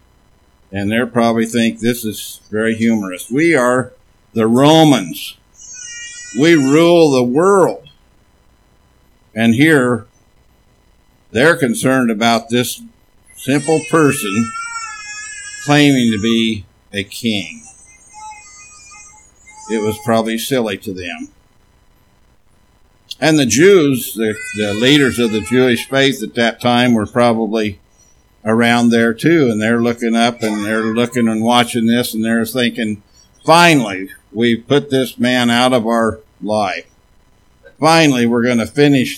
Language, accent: English, American